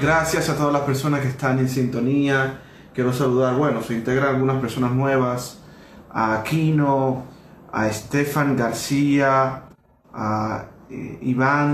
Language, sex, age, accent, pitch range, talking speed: Spanish, male, 30-49, Venezuelan, 120-135 Hz, 125 wpm